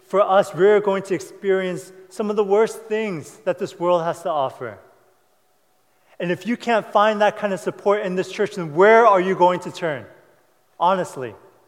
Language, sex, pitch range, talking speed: English, male, 180-220 Hz, 195 wpm